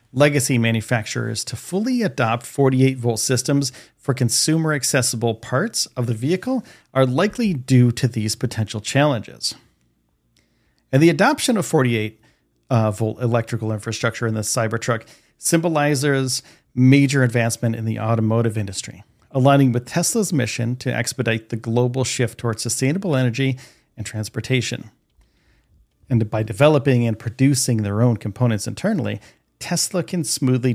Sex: male